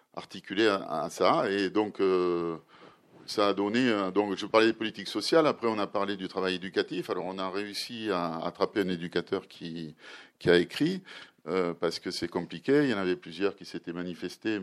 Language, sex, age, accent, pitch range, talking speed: French, male, 40-59, French, 85-110 Hz, 180 wpm